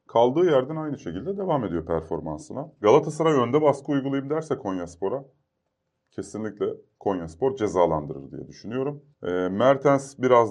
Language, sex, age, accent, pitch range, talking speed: Turkish, male, 30-49, native, 90-130 Hz, 120 wpm